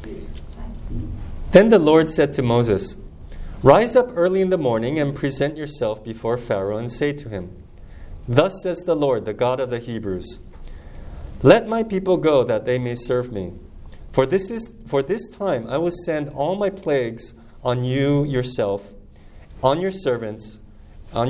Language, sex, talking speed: English, male, 160 wpm